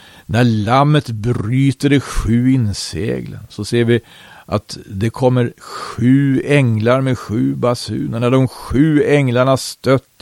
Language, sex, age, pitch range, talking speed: Swedish, male, 50-69, 105-125 Hz, 130 wpm